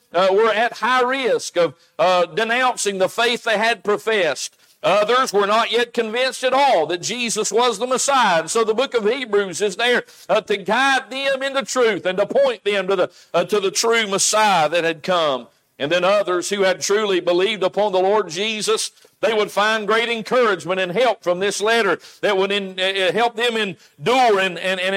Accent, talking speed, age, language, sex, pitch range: American, 200 wpm, 50-69, English, male, 195-245 Hz